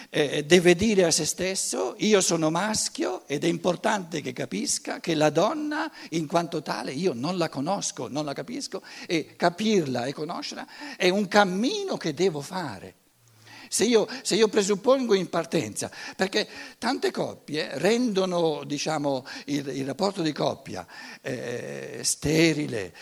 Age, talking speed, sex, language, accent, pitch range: 60-79, 145 wpm, male, Italian, native, 155-220 Hz